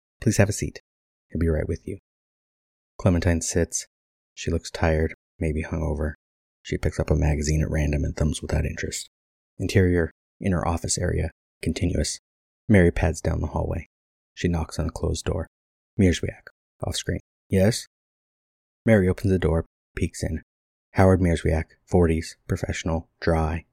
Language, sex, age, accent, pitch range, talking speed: English, male, 30-49, American, 70-90 Hz, 145 wpm